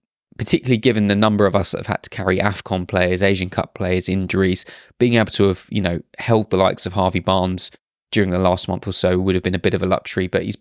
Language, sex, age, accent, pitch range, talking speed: English, male, 20-39, British, 95-115 Hz, 255 wpm